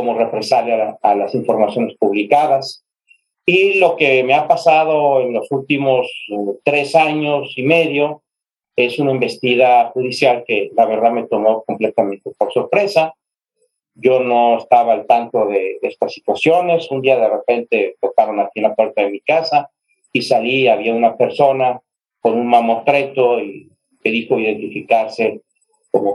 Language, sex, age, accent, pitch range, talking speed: Spanish, male, 40-59, Mexican, 120-155 Hz, 155 wpm